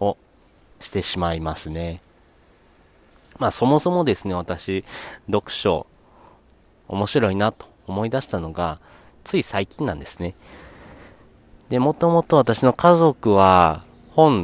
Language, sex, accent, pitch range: Japanese, male, native, 90-120 Hz